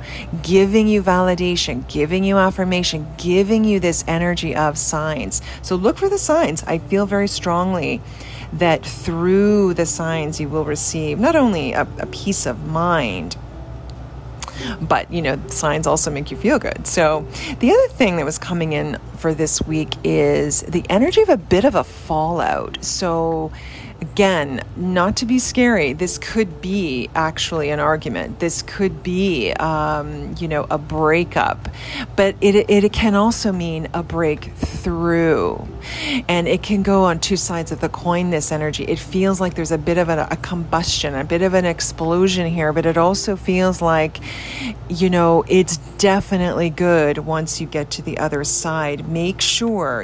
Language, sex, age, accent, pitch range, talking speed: English, female, 40-59, American, 150-185 Hz, 165 wpm